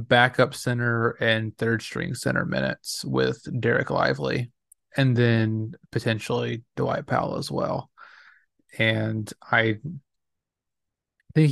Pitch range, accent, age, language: 110-120 Hz, American, 20-39, English